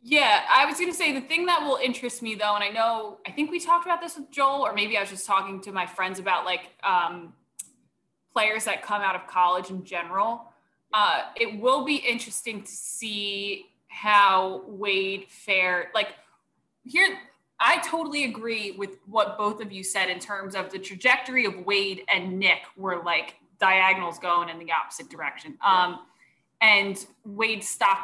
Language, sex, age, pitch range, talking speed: English, female, 20-39, 185-225 Hz, 180 wpm